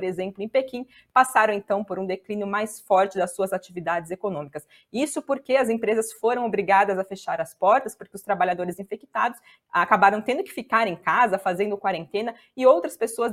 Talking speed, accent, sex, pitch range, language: 180 wpm, Brazilian, female, 185-225 Hz, Portuguese